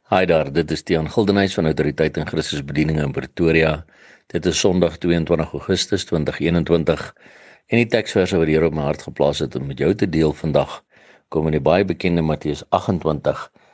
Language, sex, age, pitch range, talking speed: English, male, 60-79, 80-95 Hz, 175 wpm